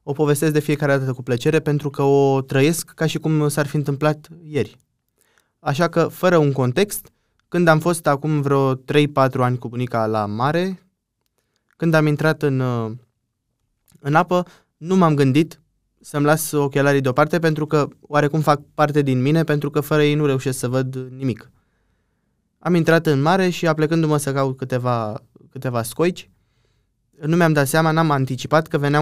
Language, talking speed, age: Romanian, 170 wpm, 20-39